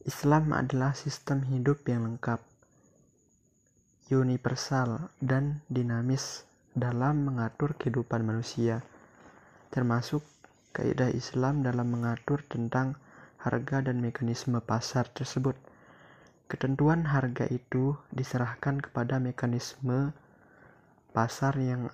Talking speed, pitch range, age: 90 wpm, 120-140 Hz, 20-39